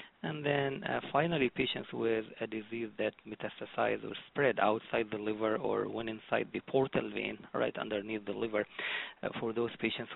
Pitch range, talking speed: 110-125 Hz, 170 wpm